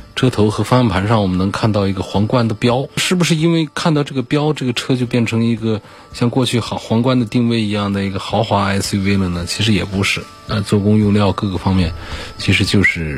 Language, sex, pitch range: Chinese, male, 90-110 Hz